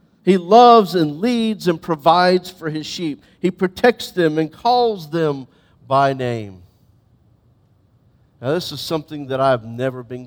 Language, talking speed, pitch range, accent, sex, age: English, 145 wpm, 115-165 Hz, American, male, 50-69